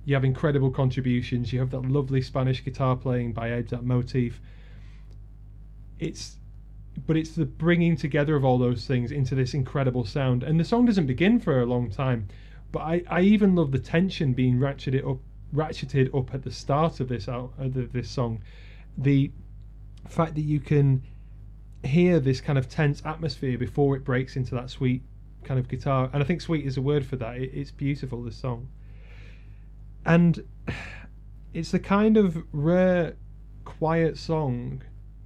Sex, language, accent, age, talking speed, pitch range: male, English, British, 30-49, 170 wpm, 125-150 Hz